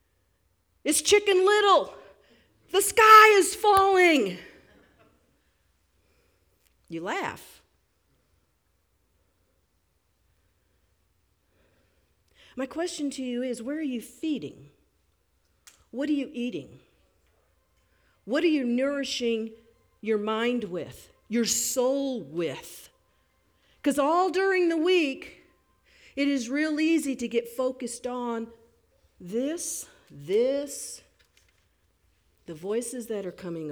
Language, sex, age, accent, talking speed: English, female, 50-69, American, 95 wpm